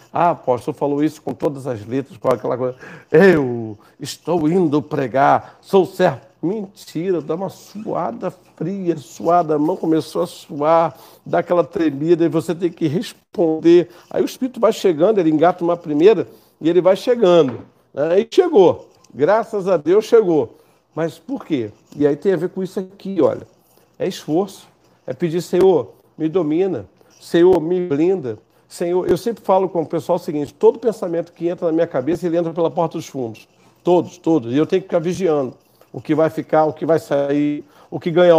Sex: male